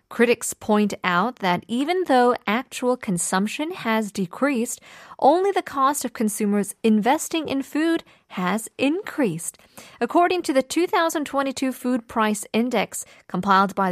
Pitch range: 185-250 Hz